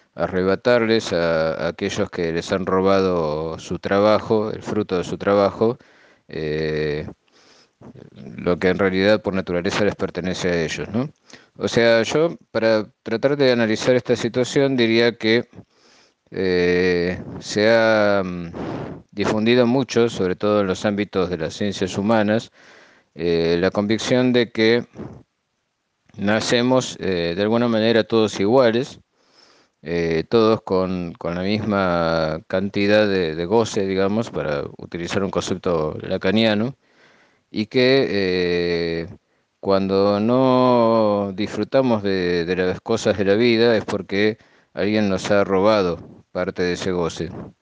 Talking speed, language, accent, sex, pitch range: 125 wpm, Spanish, Argentinian, male, 90-115 Hz